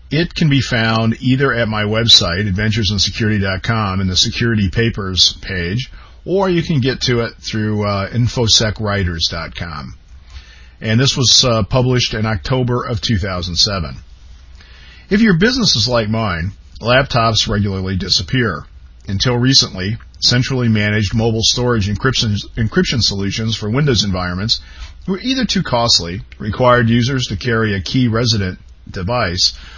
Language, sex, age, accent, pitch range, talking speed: English, male, 50-69, American, 95-125 Hz, 130 wpm